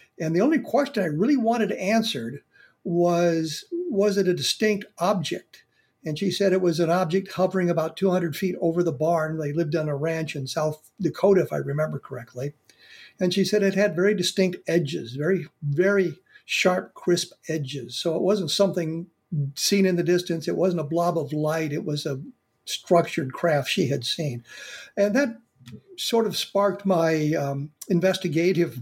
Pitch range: 155-190 Hz